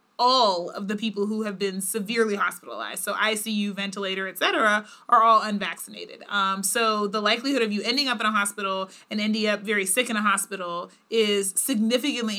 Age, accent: 30-49, American